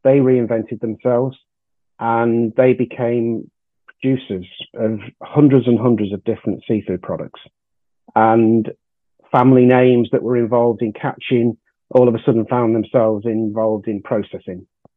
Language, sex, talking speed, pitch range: English, male, 130 wpm, 110-130 Hz